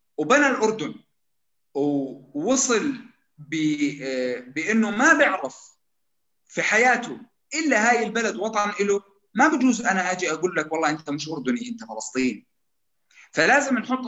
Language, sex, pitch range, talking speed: Arabic, male, 155-235 Hz, 115 wpm